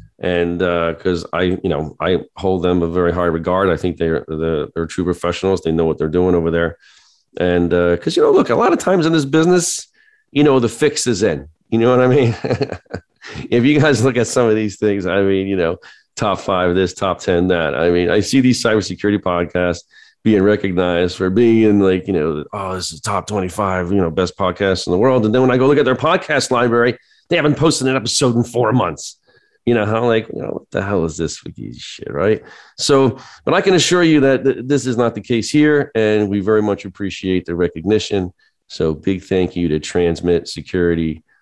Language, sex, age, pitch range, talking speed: English, male, 40-59, 85-120 Hz, 230 wpm